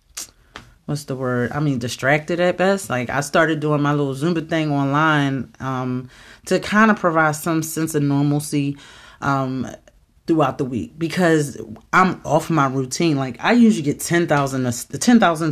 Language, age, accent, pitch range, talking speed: English, 30-49, American, 135-165 Hz, 155 wpm